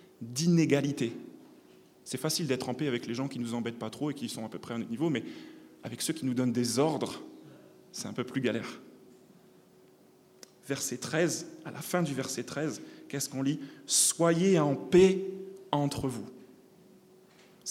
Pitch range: 130-175 Hz